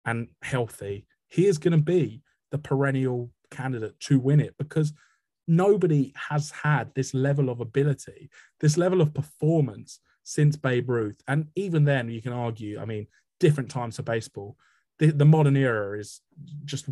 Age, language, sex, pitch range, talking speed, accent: 20-39, English, male, 115-150 Hz, 165 wpm, British